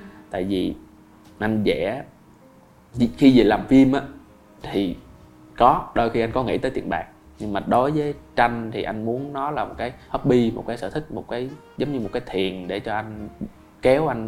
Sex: male